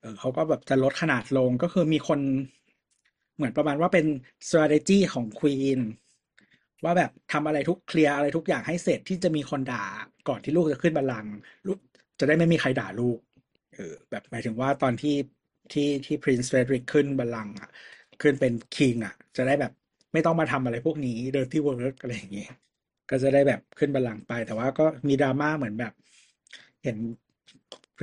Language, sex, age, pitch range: Thai, male, 60-79, 125-150 Hz